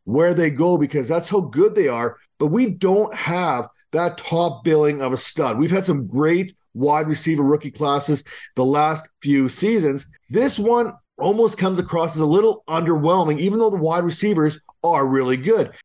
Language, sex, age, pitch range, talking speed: English, male, 40-59, 155-200 Hz, 180 wpm